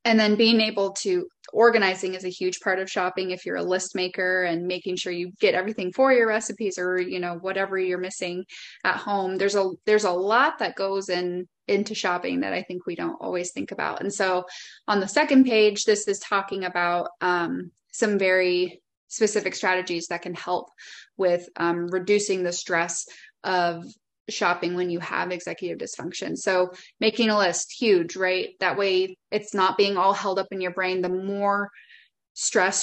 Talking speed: 185 wpm